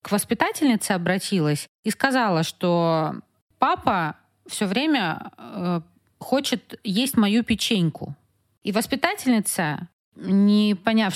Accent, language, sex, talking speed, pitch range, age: native, Russian, female, 90 wpm, 170-230 Hz, 30-49